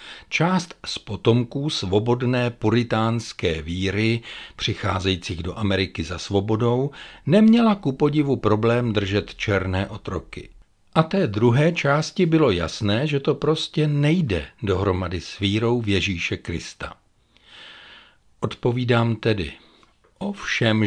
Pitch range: 95-130 Hz